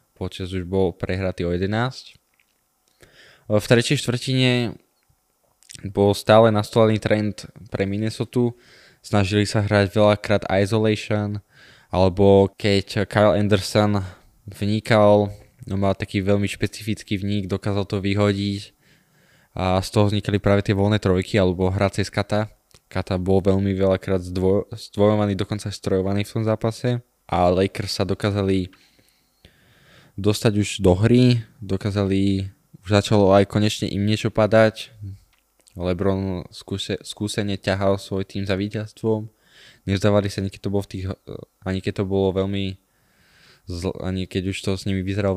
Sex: male